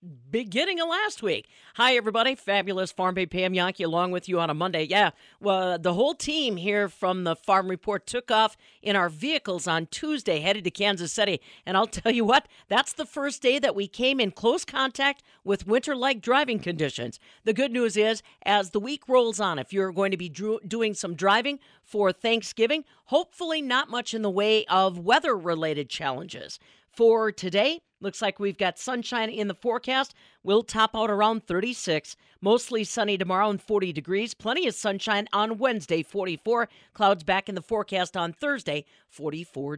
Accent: American